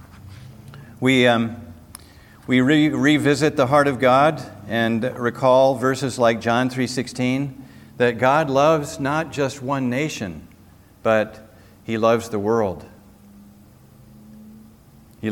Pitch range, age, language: 105-130 Hz, 50-69, English